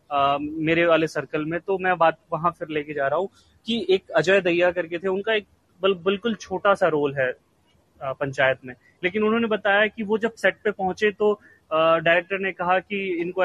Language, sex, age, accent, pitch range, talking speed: Hindi, male, 30-49, native, 160-200 Hz, 205 wpm